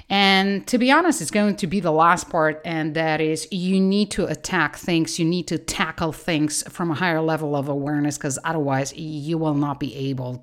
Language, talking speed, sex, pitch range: English, 215 wpm, female, 145-170 Hz